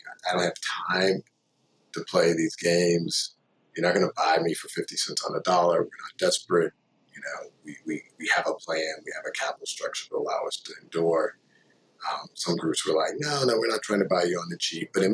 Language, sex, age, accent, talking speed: English, male, 50-69, American, 235 wpm